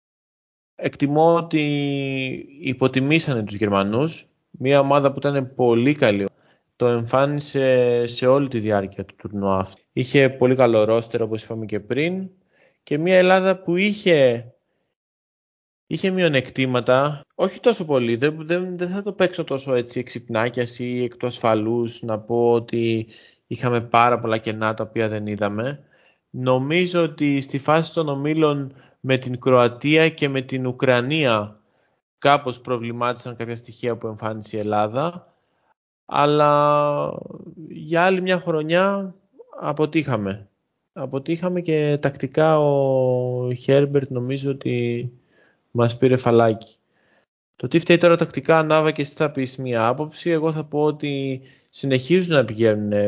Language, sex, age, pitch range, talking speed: Greek, male, 20-39, 115-155 Hz, 130 wpm